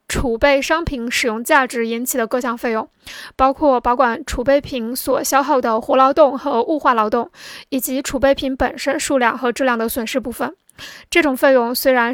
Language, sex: Chinese, female